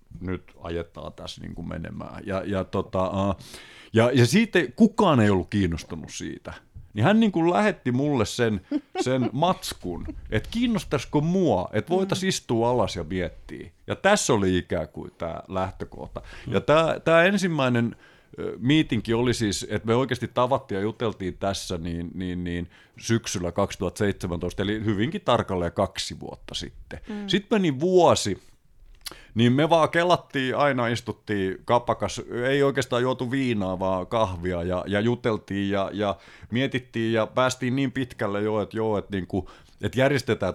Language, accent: Finnish, native